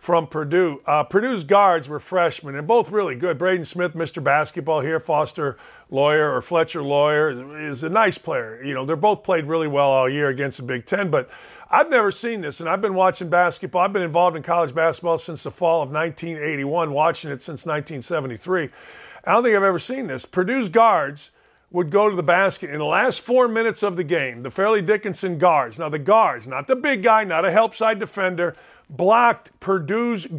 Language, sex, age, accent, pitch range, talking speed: English, male, 50-69, American, 165-220 Hz, 205 wpm